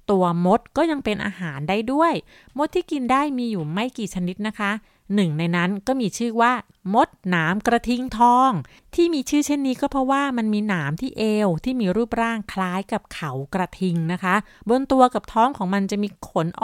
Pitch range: 185-245 Hz